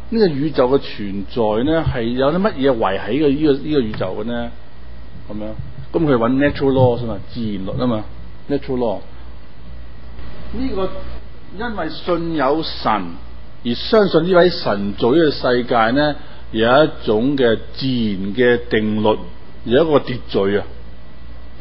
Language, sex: Chinese, male